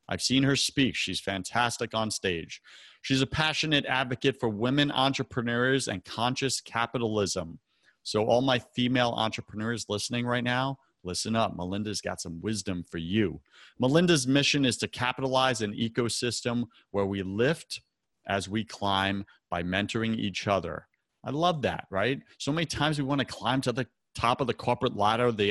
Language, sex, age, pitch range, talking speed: English, male, 30-49, 105-140 Hz, 165 wpm